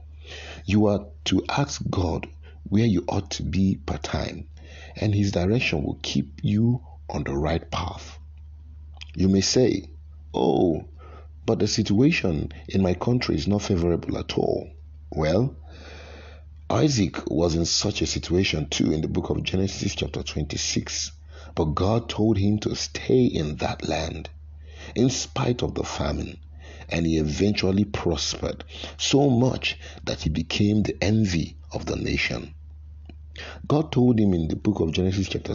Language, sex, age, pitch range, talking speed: English, male, 50-69, 75-100 Hz, 150 wpm